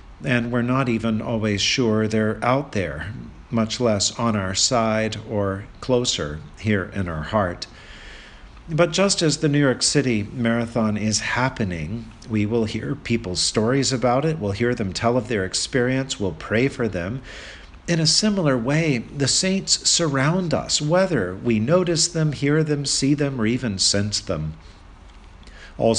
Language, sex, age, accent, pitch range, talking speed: English, male, 50-69, American, 105-145 Hz, 160 wpm